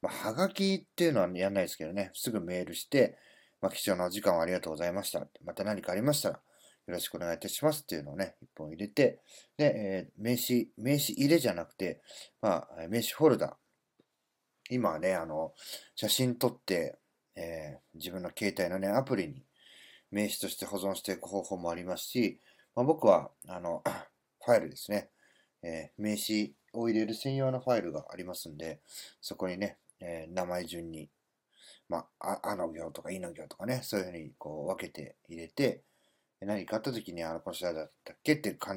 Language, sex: Japanese, male